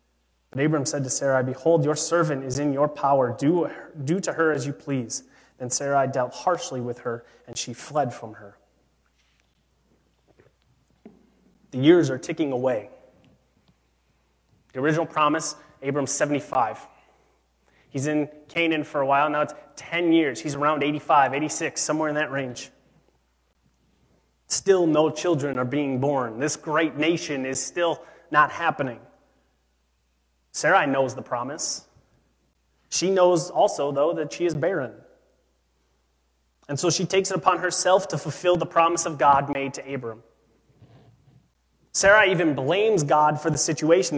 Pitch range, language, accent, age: 125-170 Hz, English, American, 30-49